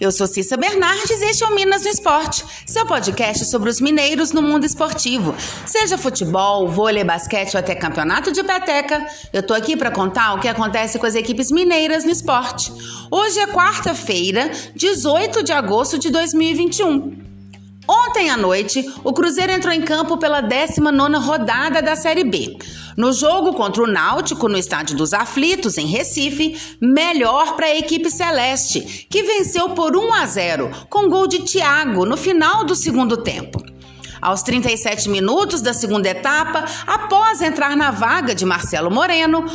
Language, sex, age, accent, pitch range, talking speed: Portuguese, female, 30-49, Brazilian, 235-345 Hz, 165 wpm